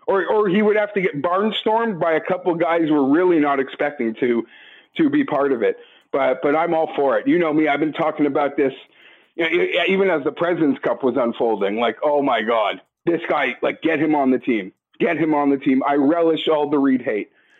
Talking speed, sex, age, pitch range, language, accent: 235 wpm, male, 40-59, 155-210 Hz, English, American